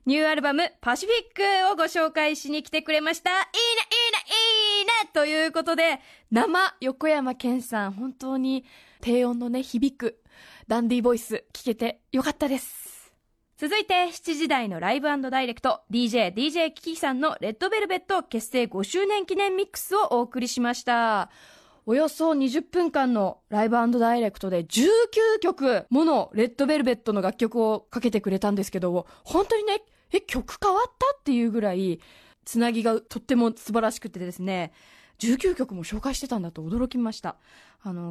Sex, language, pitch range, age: female, Japanese, 225-320 Hz, 20-39